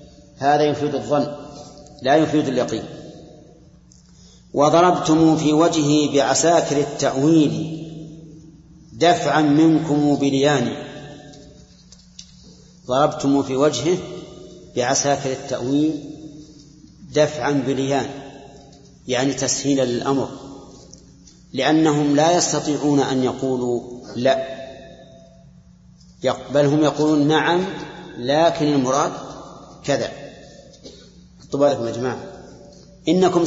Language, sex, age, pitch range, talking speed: Arabic, male, 40-59, 135-160 Hz, 70 wpm